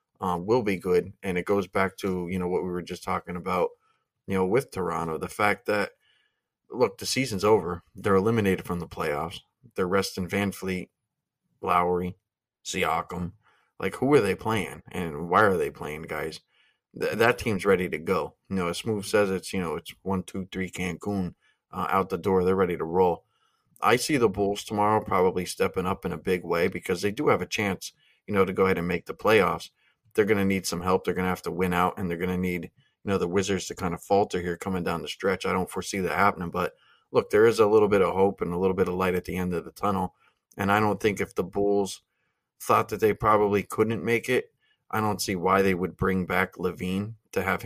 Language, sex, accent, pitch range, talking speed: English, male, American, 90-100 Hz, 235 wpm